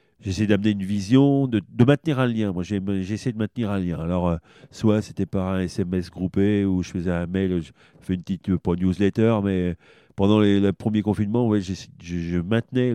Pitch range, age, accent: 90-110 Hz, 40-59, French